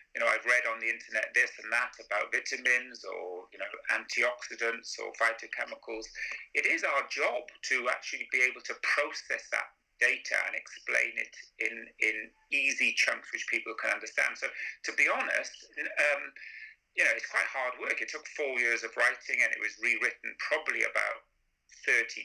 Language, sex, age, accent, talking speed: English, male, 40-59, British, 175 wpm